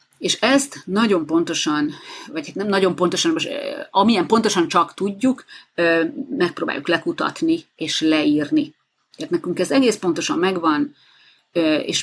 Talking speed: 120 wpm